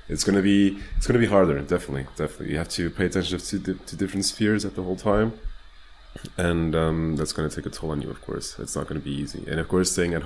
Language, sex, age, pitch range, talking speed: English, male, 30-49, 80-95 Hz, 255 wpm